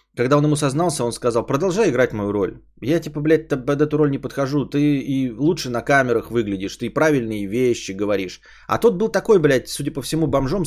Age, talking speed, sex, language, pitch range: 20-39, 210 wpm, male, Bulgarian, 105-140 Hz